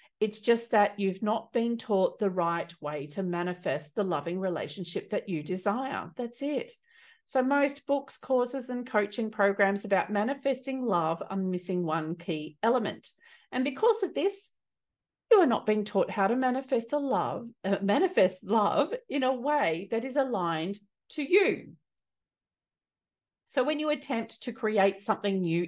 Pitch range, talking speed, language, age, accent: 190-265 Hz, 155 wpm, English, 40-59, Australian